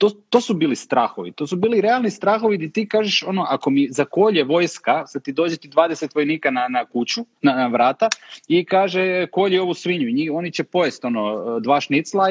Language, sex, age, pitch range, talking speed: English, male, 30-49, 130-185 Hz, 200 wpm